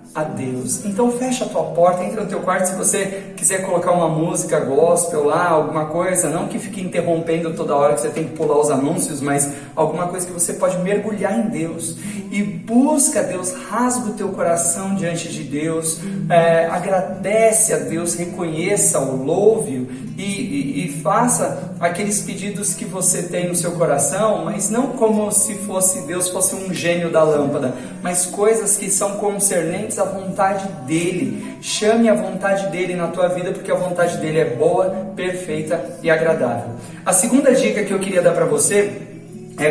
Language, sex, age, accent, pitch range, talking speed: Portuguese, male, 40-59, Brazilian, 165-200 Hz, 180 wpm